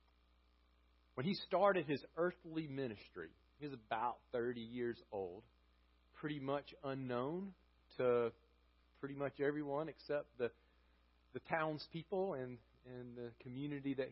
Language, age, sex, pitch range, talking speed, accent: English, 40-59, male, 115-165 Hz, 120 wpm, American